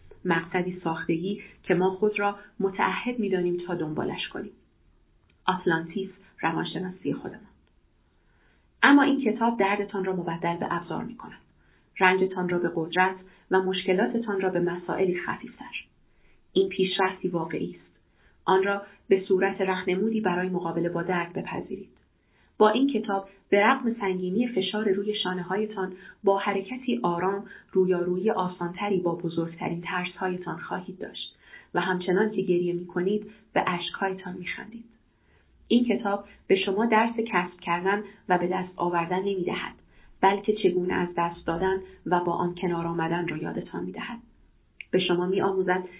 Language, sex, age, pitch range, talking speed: Persian, female, 30-49, 175-200 Hz, 140 wpm